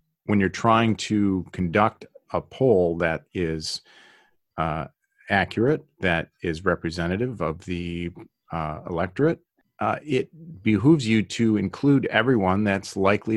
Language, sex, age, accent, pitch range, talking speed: English, male, 40-59, American, 85-105 Hz, 120 wpm